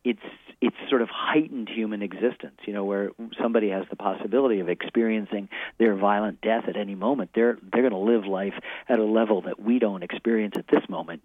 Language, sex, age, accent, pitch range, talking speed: English, male, 50-69, American, 100-115 Hz, 205 wpm